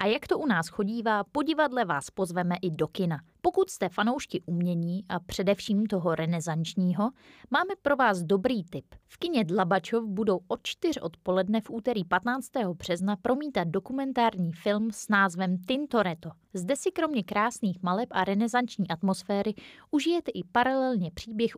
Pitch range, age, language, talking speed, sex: 175-235 Hz, 20-39, Czech, 150 wpm, female